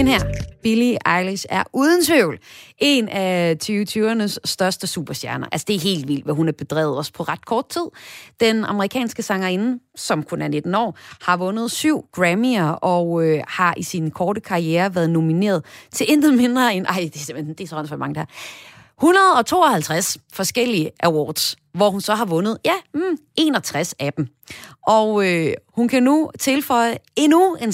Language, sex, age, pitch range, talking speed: Danish, female, 30-49, 170-245 Hz, 175 wpm